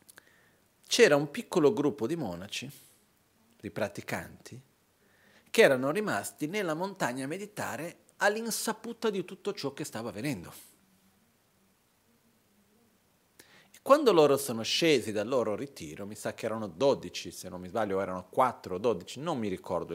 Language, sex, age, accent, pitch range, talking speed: Italian, male, 40-59, native, 100-170 Hz, 140 wpm